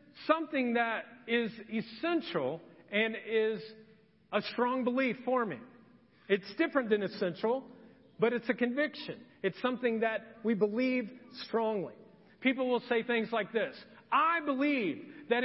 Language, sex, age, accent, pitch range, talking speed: English, male, 40-59, American, 210-265 Hz, 130 wpm